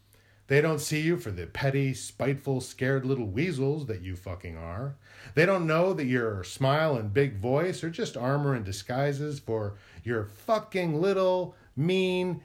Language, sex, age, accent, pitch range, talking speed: English, male, 40-59, American, 115-165 Hz, 165 wpm